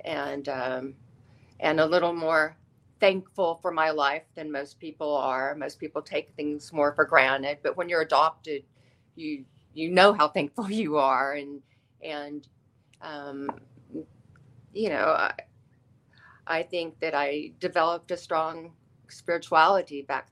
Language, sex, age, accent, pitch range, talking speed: English, female, 40-59, American, 135-170 Hz, 140 wpm